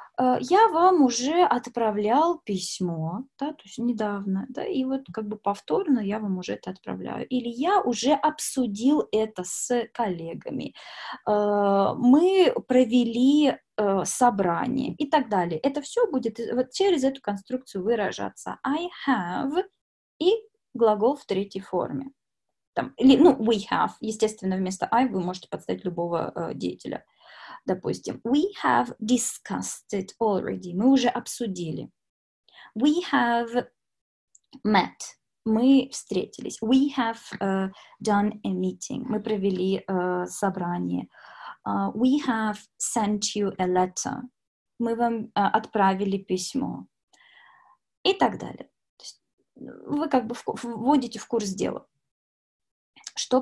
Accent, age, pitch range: native, 20-39, 195-265 Hz